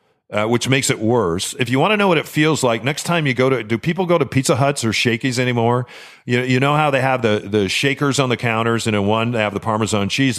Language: English